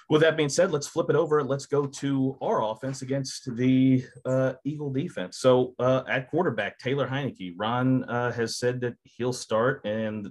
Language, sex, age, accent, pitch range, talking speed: English, male, 30-49, American, 105-125 Hz, 185 wpm